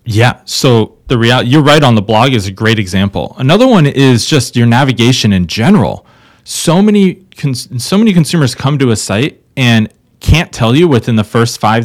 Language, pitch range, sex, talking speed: English, 110-145 Hz, male, 190 wpm